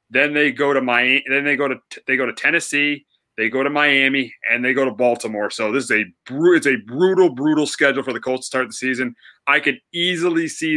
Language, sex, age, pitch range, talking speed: English, male, 30-49, 120-145 Hz, 235 wpm